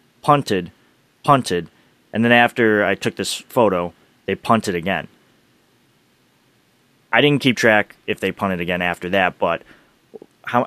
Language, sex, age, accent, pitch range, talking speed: English, male, 20-39, American, 95-130 Hz, 135 wpm